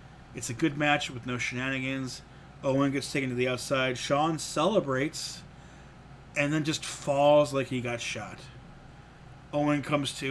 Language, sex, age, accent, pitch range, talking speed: English, male, 30-49, American, 125-145 Hz, 150 wpm